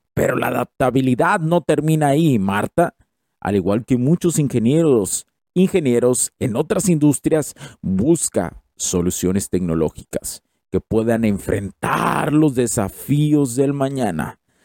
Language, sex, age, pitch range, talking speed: Spanish, male, 50-69, 100-145 Hz, 105 wpm